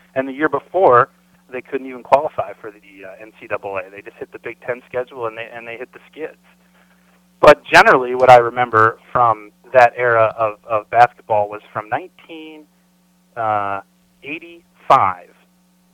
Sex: male